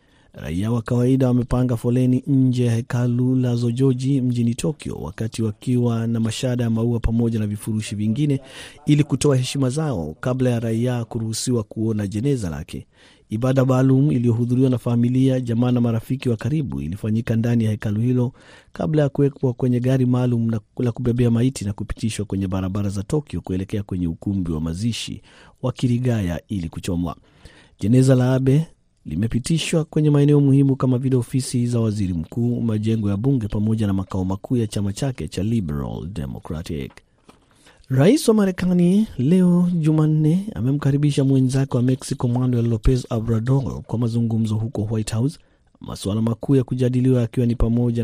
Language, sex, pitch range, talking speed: Swahili, male, 110-130 Hz, 150 wpm